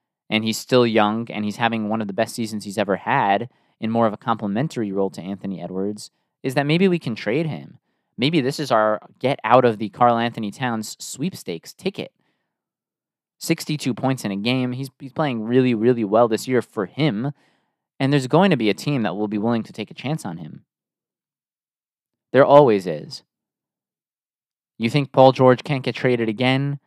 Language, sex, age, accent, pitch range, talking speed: English, male, 20-39, American, 105-125 Hz, 180 wpm